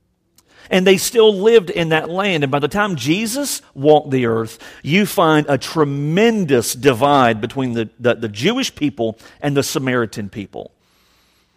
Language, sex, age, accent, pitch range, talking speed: English, male, 50-69, American, 115-150 Hz, 155 wpm